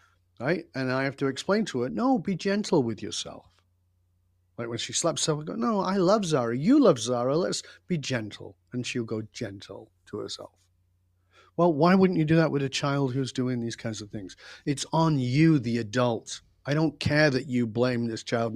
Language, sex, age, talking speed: English, male, 40-59, 205 wpm